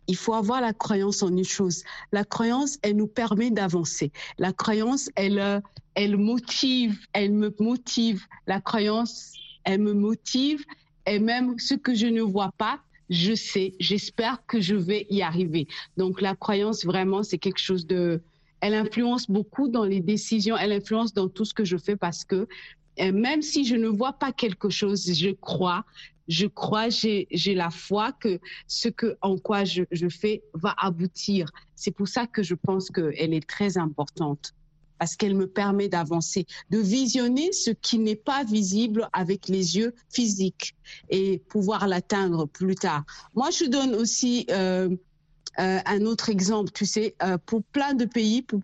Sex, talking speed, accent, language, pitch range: female, 175 wpm, French, French, 185-225 Hz